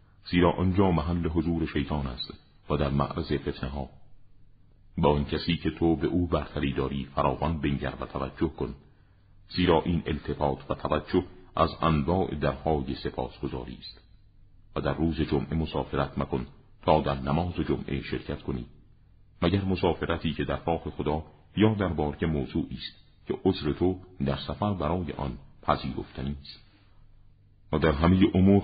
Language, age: Persian, 50-69